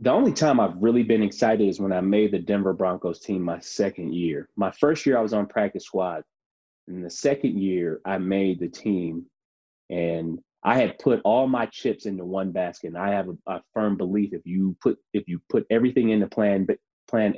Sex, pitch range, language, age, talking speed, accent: male, 90-110 Hz, English, 30-49, 200 wpm, American